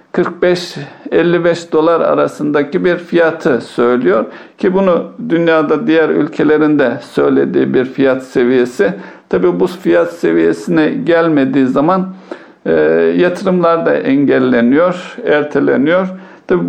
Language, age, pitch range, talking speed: Turkish, 60-79, 145-180 Hz, 95 wpm